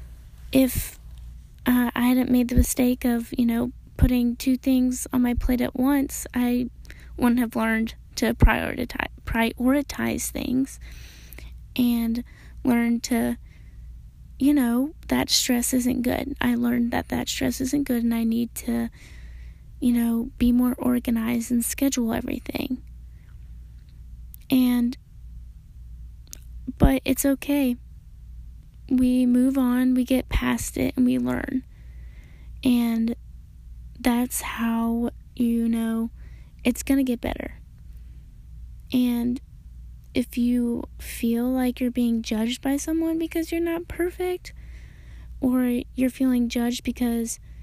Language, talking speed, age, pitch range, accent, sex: English, 120 wpm, 10-29, 225-255 Hz, American, female